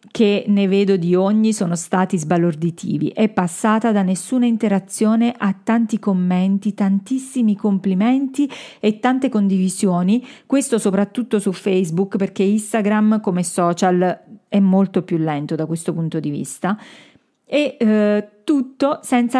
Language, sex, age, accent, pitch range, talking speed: Italian, female, 40-59, native, 180-225 Hz, 130 wpm